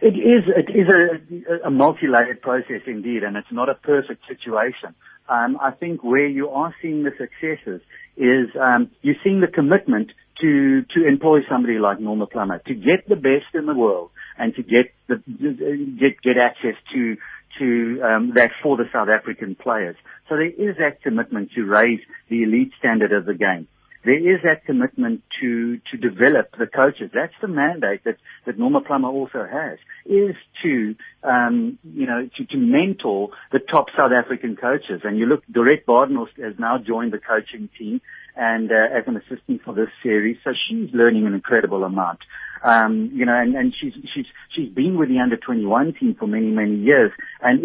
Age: 60-79